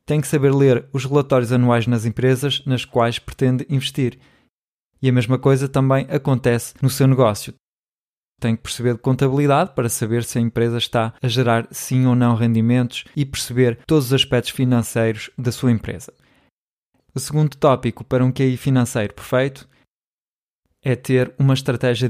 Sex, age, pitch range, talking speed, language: male, 20-39, 120-135 Hz, 160 wpm, Portuguese